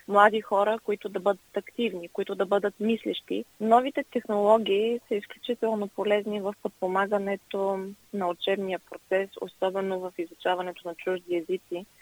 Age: 20-39